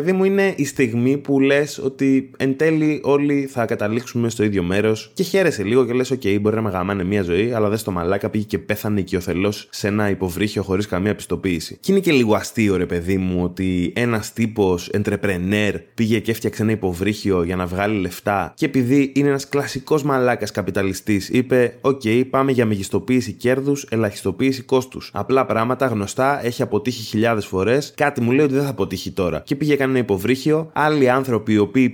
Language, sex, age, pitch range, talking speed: Greek, male, 20-39, 100-130 Hz, 190 wpm